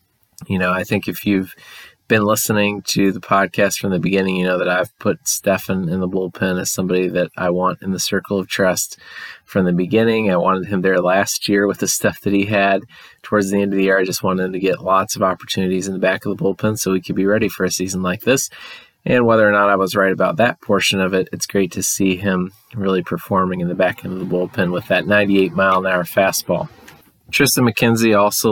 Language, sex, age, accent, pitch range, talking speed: English, male, 20-39, American, 95-105 Hz, 240 wpm